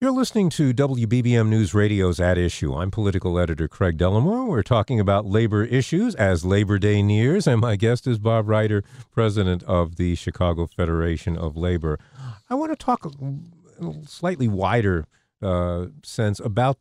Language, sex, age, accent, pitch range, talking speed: English, male, 50-69, American, 100-140 Hz, 165 wpm